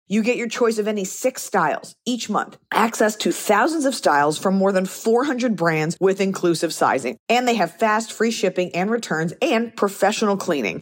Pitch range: 155-205 Hz